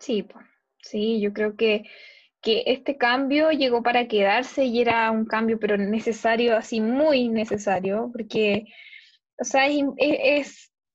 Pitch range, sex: 225-300 Hz, female